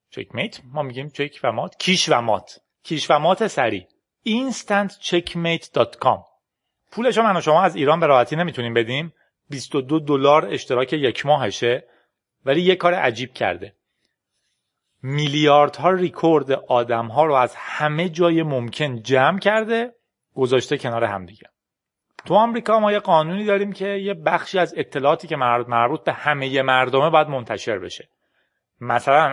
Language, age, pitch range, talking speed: Persian, 30-49, 125-170 Hz, 140 wpm